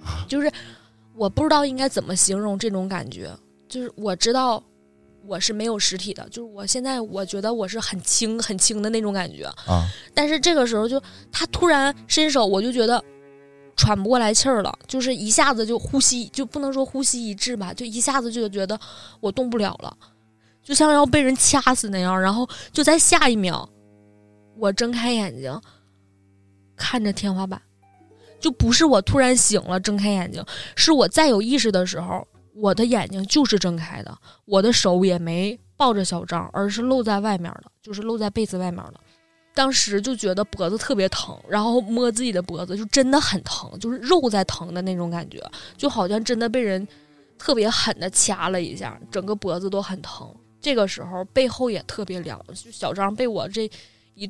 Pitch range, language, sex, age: 180-245 Hz, Chinese, female, 20-39